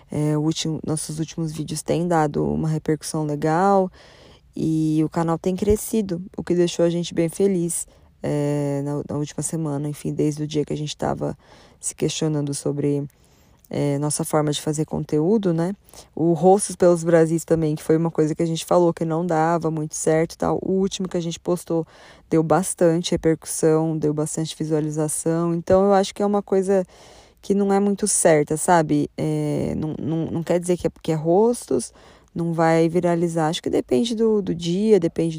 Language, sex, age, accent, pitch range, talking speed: Portuguese, female, 20-39, Brazilian, 155-180 Hz, 190 wpm